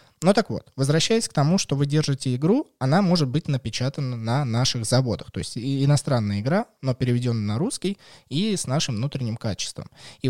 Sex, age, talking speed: male, 20-39, 180 wpm